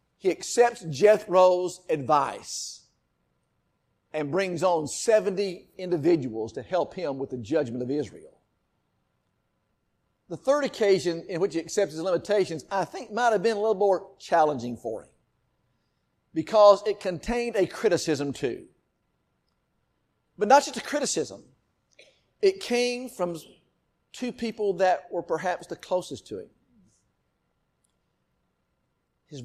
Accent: American